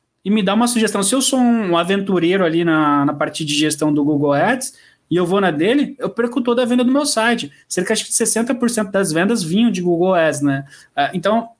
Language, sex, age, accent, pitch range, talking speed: Portuguese, male, 20-39, Brazilian, 165-220 Hz, 220 wpm